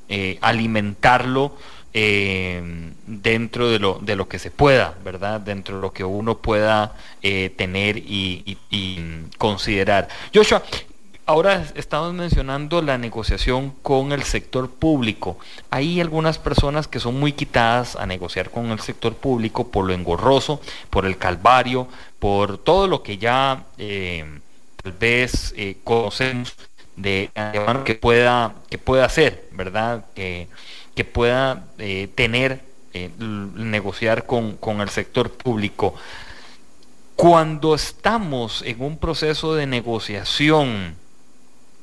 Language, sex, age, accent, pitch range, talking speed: English, male, 30-49, Mexican, 100-140 Hz, 130 wpm